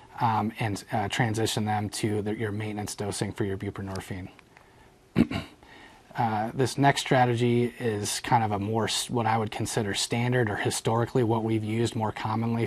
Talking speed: 165 wpm